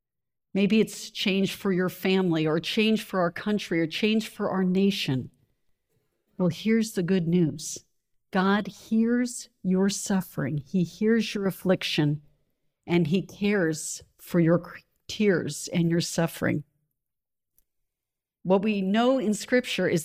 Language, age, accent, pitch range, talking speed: English, 50-69, American, 175-215 Hz, 130 wpm